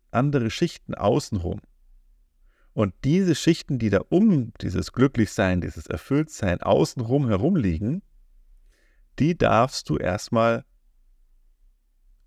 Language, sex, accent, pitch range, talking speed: German, male, German, 80-125 Hz, 95 wpm